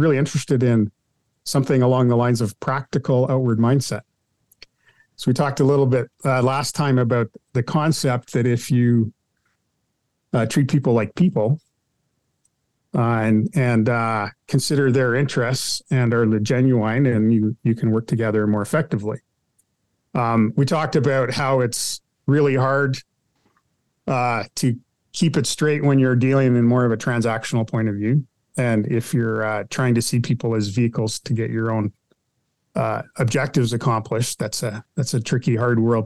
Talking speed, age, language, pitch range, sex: 160 wpm, 40-59, English, 115-140 Hz, male